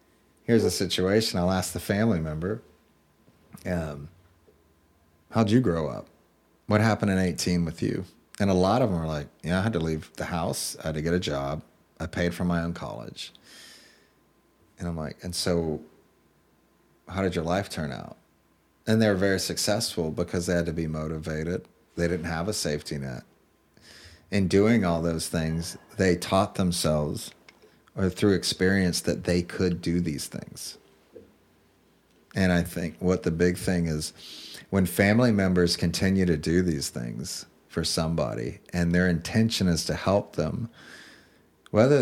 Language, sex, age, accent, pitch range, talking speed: English, male, 30-49, American, 80-95 Hz, 165 wpm